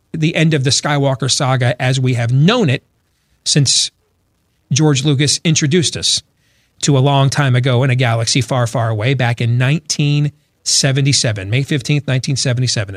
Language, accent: English, American